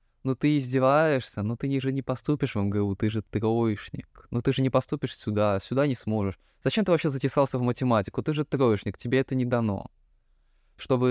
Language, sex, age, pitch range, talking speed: Russian, male, 20-39, 100-125 Hz, 195 wpm